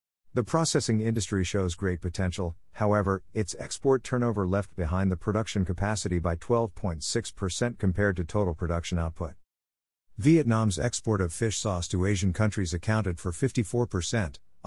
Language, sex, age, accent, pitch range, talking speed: English, male, 50-69, American, 90-115 Hz, 135 wpm